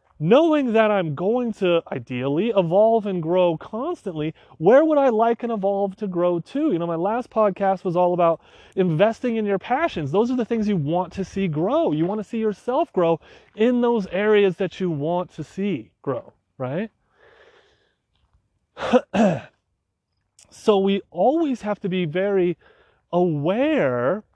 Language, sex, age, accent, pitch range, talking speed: English, male, 30-49, American, 150-200 Hz, 160 wpm